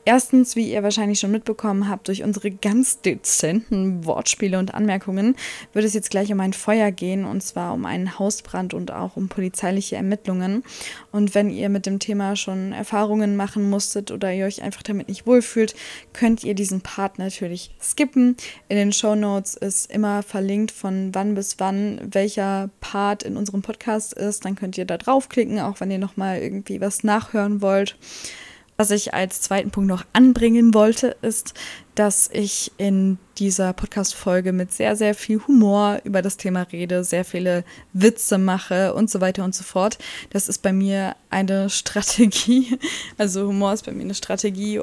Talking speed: 175 wpm